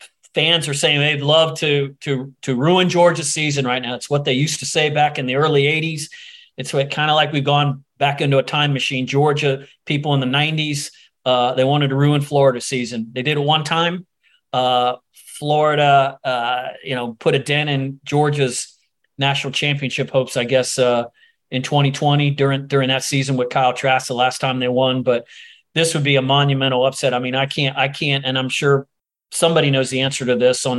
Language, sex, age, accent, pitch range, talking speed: English, male, 40-59, American, 130-150 Hz, 205 wpm